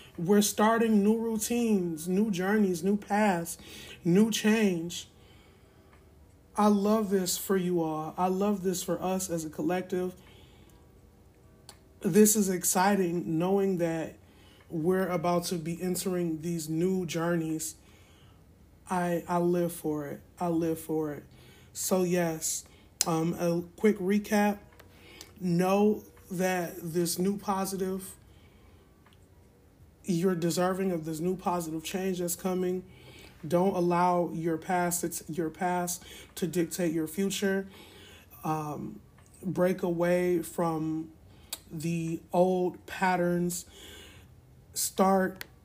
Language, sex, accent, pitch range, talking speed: English, male, American, 165-190 Hz, 110 wpm